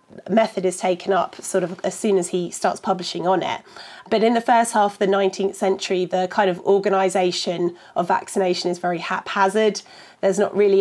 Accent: British